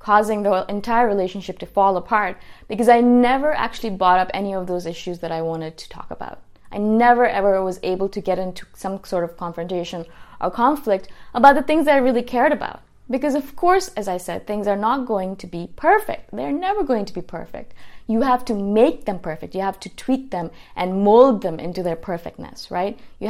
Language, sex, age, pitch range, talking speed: English, female, 20-39, 180-235 Hz, 215 wpm